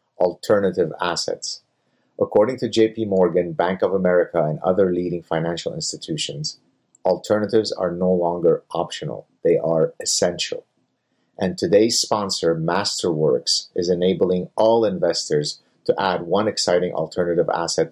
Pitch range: 85-110 Hz